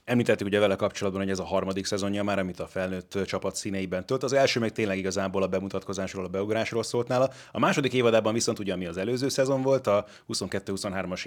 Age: 30-49